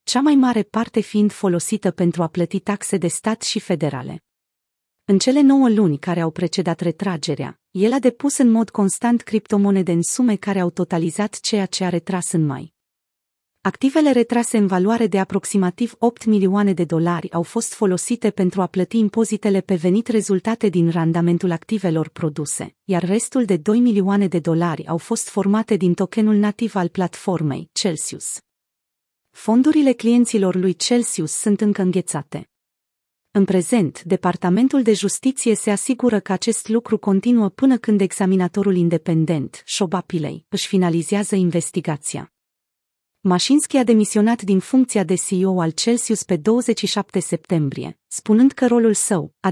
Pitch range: 175-220 Hz